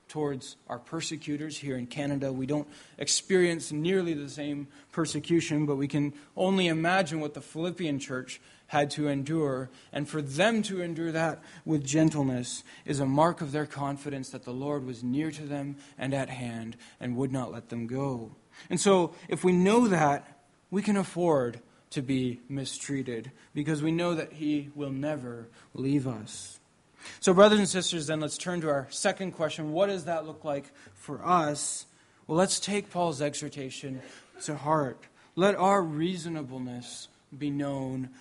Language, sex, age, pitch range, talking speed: English, male, 20-39, 140-170 Hz, 165 wpm